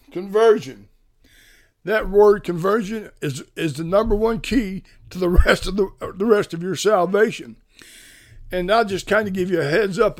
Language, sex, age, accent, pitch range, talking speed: English, male, 60-79, American, 155-210 Hz, 175 wpm